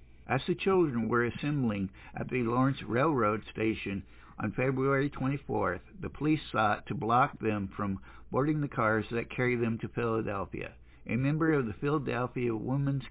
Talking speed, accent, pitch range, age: 155 wpm, American, 110-140 Hz, 60-79